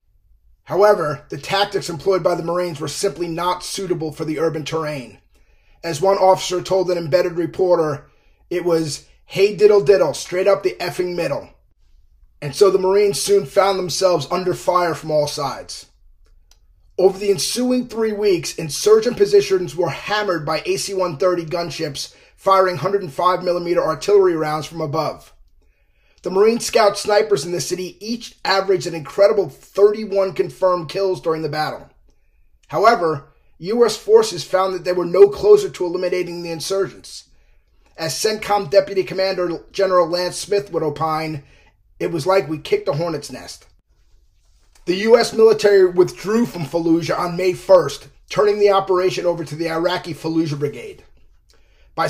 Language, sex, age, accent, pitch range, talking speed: English, male, 30-49, American, 160-195 Hz, 145 wpm